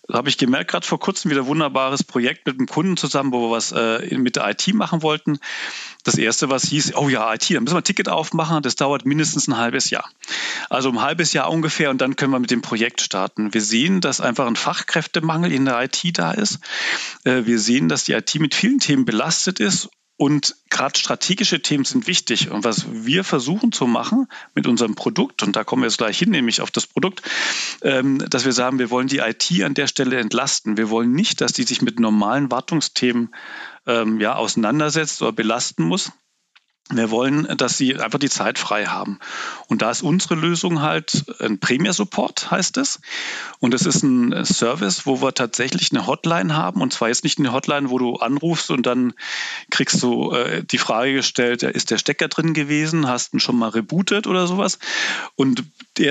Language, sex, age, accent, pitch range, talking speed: German, male, 40-59, German, 125-165 Hz, 200 wpm